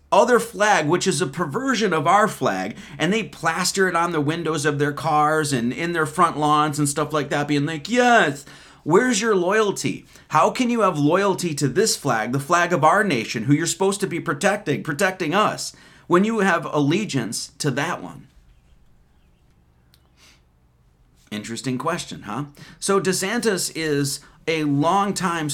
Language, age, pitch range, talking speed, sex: English, 30-49, 115-175 Hz, 165 wpm, male